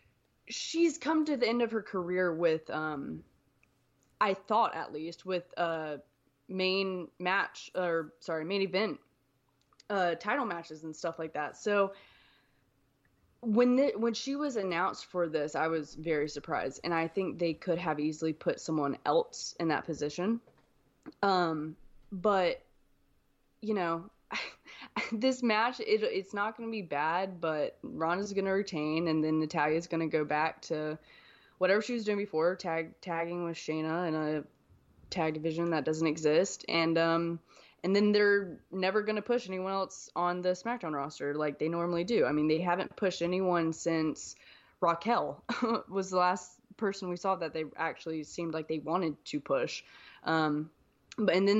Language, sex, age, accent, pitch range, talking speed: English, female, 20-39, American, 155-195 Hz, 165 wpm